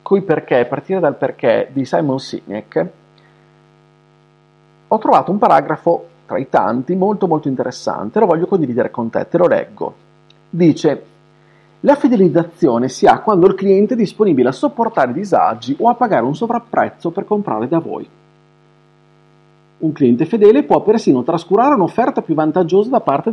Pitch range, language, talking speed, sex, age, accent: 155-185 Hz, Italian, 150 wpm, male, 40-59, native